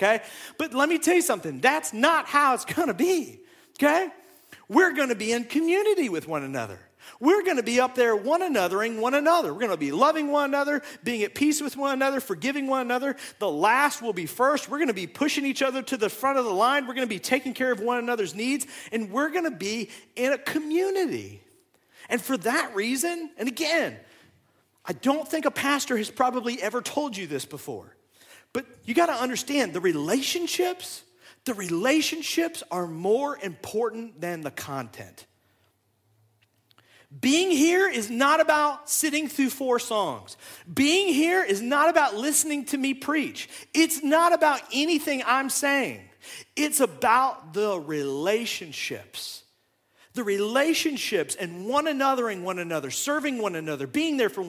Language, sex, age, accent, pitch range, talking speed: English, male, 40-59, American, 210-300 Hz, 175 wpm